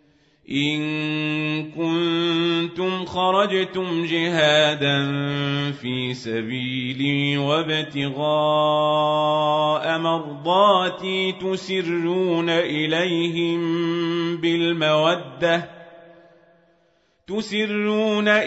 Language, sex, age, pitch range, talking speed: Arabic, male, 40-59, 150-175 Hz, 40 wpm